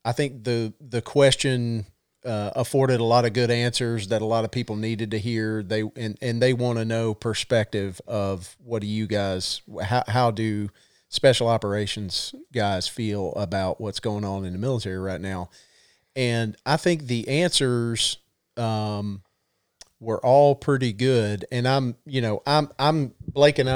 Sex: male